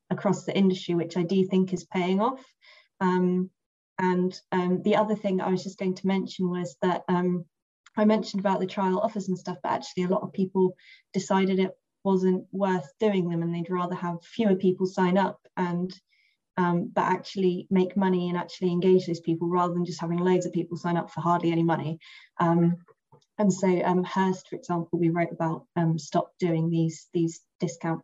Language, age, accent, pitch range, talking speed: English, 20-39, British, 170-185 Hz, 195 wpm